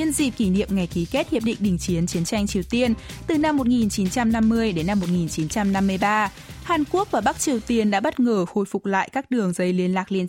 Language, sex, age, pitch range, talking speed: Vietnamese, female, 20-39, 180-240 Hz, 225 wpm